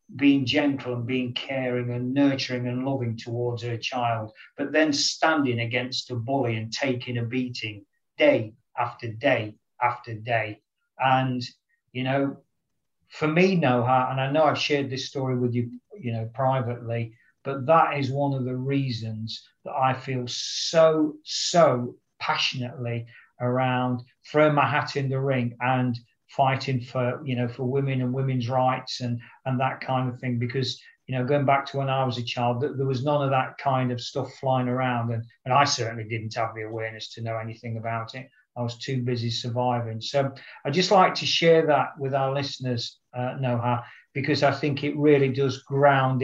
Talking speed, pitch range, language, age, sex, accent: 180 wpm, 120-140 Hz, English, 40-59, male, British